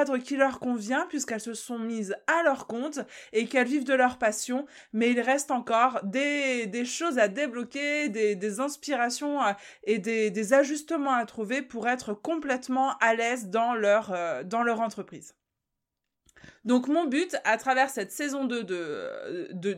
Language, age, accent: French, 20-39, French